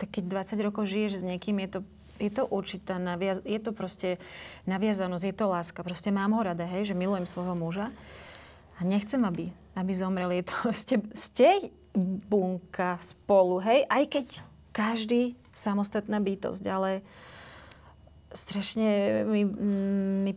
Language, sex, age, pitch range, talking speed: Slovak, female, 30-49, 175-215 Hz, 145 wpm